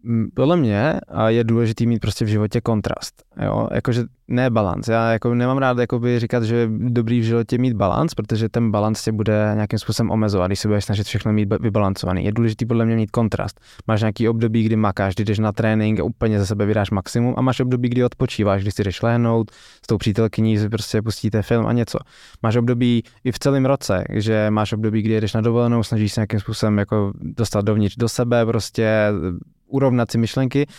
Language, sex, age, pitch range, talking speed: Czech, male, 20-39, 110-120 Hz, 195 wpm